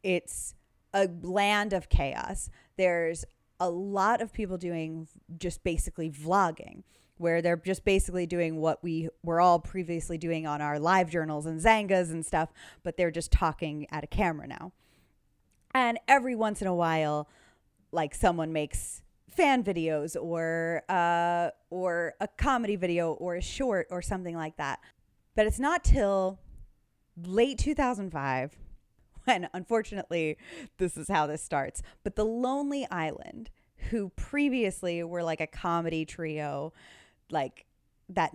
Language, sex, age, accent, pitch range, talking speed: English, female, 20-39, American, 160-195 Hz, 140 wpm